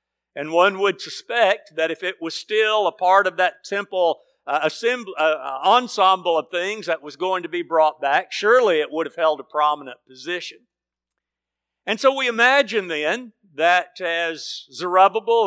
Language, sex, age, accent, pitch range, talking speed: English, male, 50-69, American, 145-205 Hz, 165 wpm